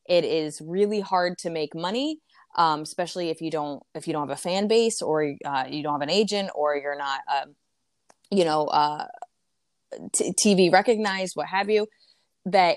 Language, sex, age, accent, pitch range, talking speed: English, female, 20-39, American, 155-195 Hz, 190 wpm